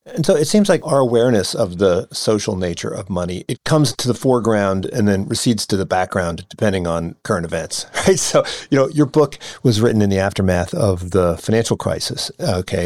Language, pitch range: English, 95-120 Hz